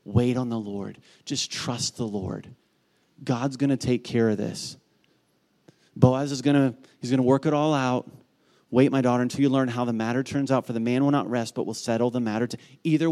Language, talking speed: English, 225 wpm